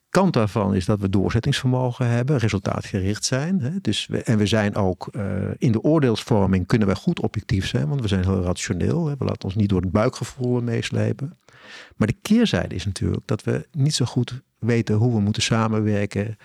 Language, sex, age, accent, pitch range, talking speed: Dutch, male, 50-69, Dutch, 100-130 Hz, 200 wpm